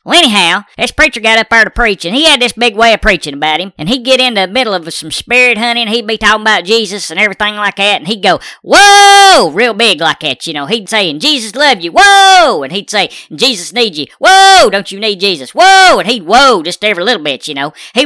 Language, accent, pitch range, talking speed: English, American, 200-275 Hz, 265 wpm